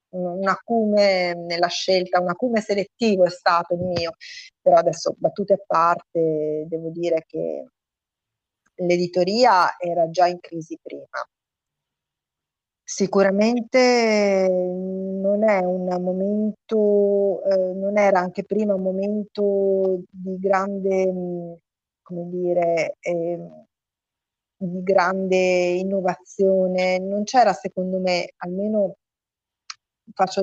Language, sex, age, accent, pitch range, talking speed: Italian, female, 30-49, native, 175-195 Hz, 100 wpm